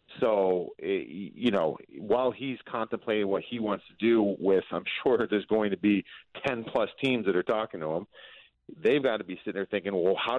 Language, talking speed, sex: English, 200 wpm, male